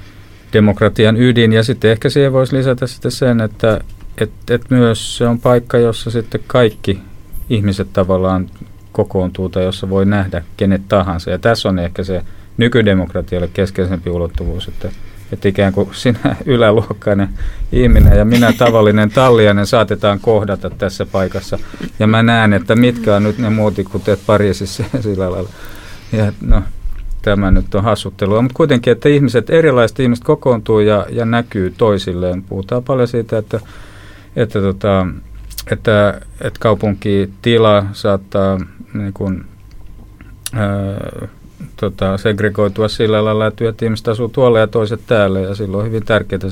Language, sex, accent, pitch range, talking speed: Finnish, male, native, 95-115 Hz, 145 wpm